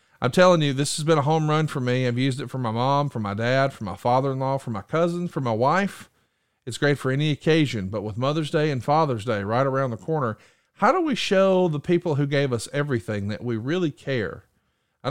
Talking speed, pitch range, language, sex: 240 wpm, 120-160 Hz, English, male